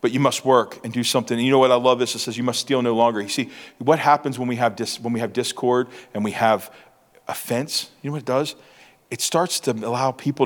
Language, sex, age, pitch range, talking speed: English, male, 40-59, 125-165 Hz, 270 wpm